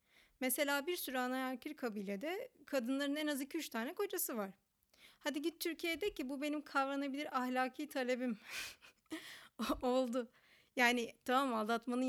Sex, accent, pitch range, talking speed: female, native, 230-285 Hz, 130 wpm